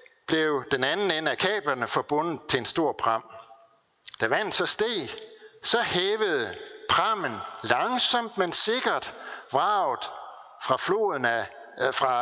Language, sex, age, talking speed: Danish, male, 60-79, 120 wpm